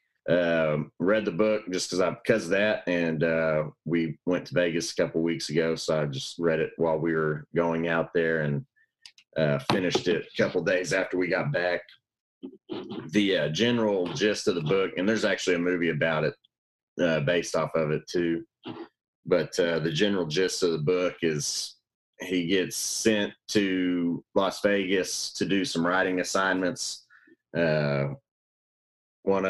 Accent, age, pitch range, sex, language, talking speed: American, 30-49, 80-95 Hz, male, English, 170 wpm